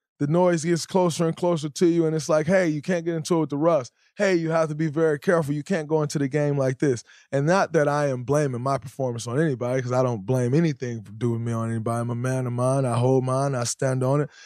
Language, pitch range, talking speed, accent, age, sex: English, 130-160 Hz, 280 wpm, American, 20-39, male